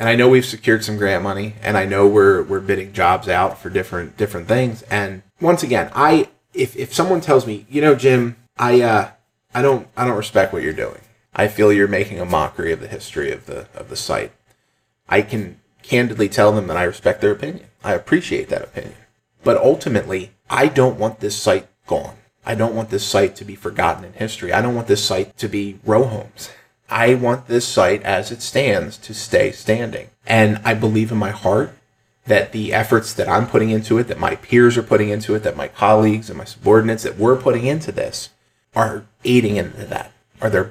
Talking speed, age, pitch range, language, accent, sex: 215 wpm, 30-49, 105-130 Hz, English, American, male